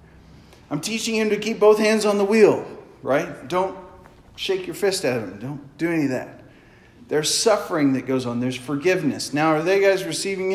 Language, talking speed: English, 195 wpm